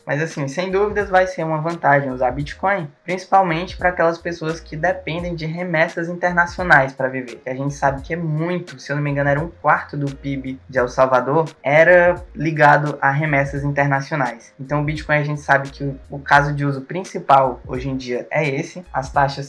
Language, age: Portuguese, 10-29